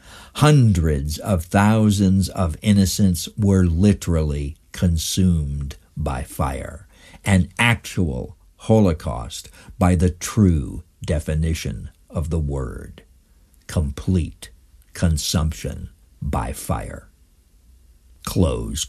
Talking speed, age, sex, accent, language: 80 wpm, 60-79, male, American, English